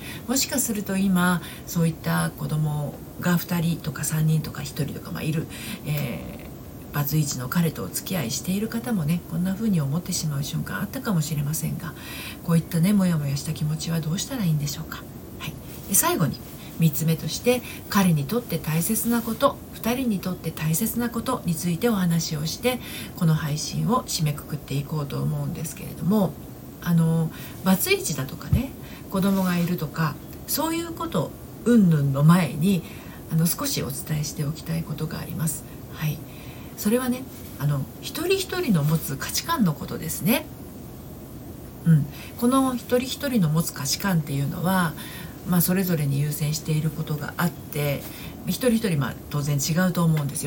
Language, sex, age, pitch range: Japanese, female, 40-59, 150-195 Hz